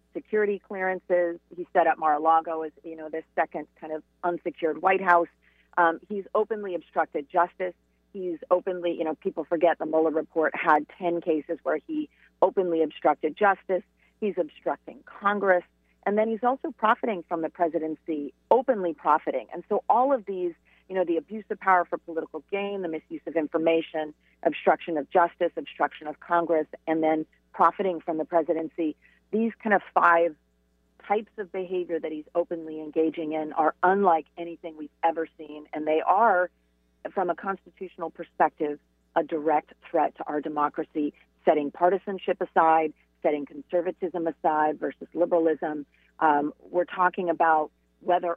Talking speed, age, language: 155 wpm, 40-59, English